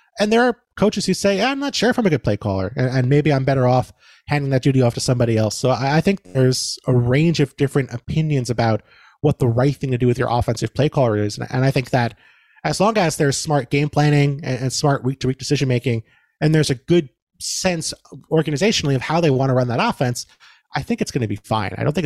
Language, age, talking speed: English, 30-49, 240 wpm